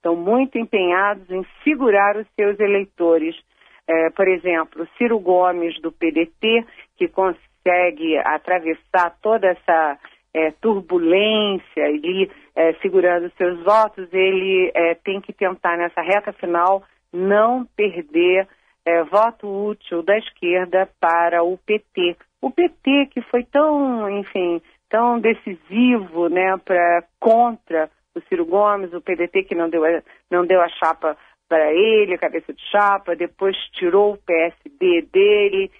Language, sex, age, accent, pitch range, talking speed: Portuguese, female, 40-59, Brazilian, 170-210 Hz, 135 wpm